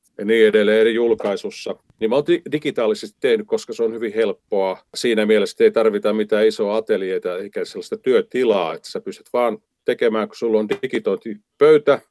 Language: Finnish